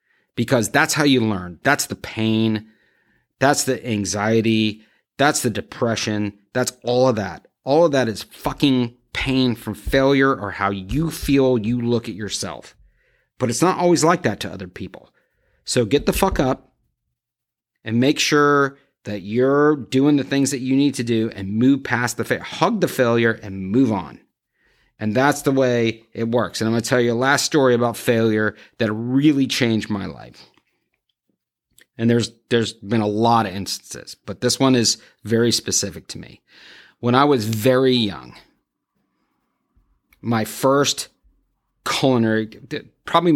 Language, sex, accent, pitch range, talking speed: English, male, American, 105-135 Hz, 165 wpm